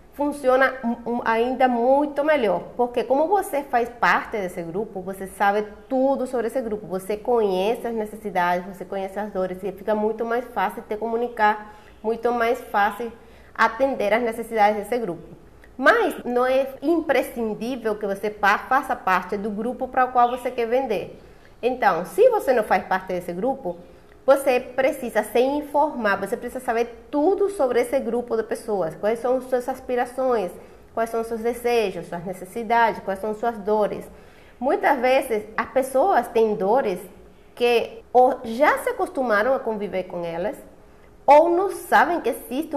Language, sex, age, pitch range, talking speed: Portuguese, female, 30-49, 210-260 Hz, 155 wpm